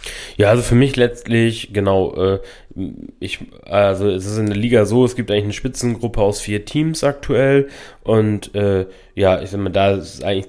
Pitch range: 95-110 Hz